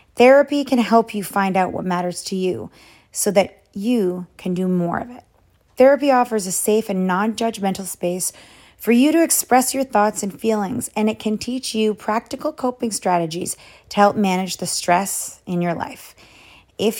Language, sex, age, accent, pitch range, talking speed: English, female, 30-49, American, 180-225 Hz, 175 wpm